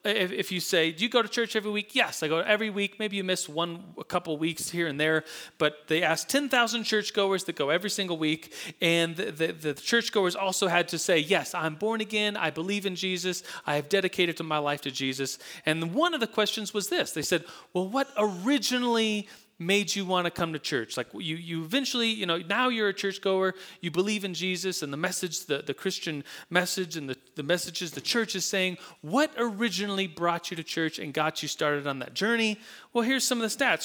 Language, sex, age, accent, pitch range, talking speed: English, male, 30-49, American, 160-205 Hz, 225 wpm